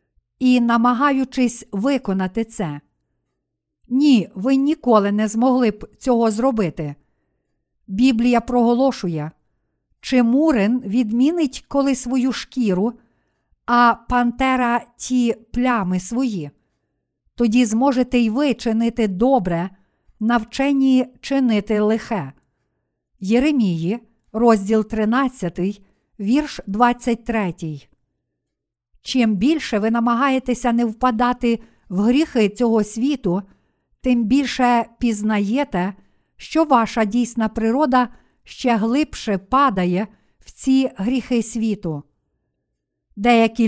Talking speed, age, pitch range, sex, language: 90 wpm, 50-69, 215-255 Hz, female, Ukrainian